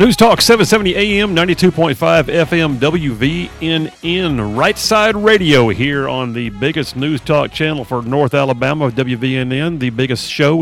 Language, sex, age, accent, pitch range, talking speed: English, male, 50-69, American, 125-160 Hz, 135 wpm